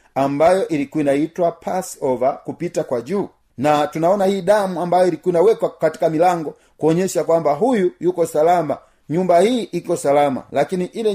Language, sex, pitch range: Swahili, male, 135-175 Hz